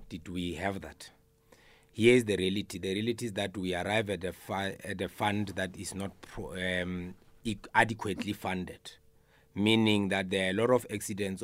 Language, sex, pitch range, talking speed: English, male, 95-110 Hz, 190 wpm